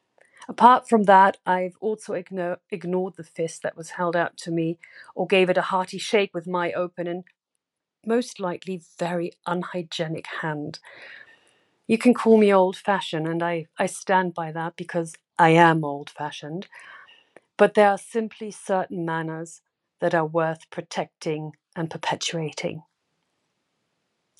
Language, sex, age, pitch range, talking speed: English, female, 40-59, 165-190 Hz, 140 wpm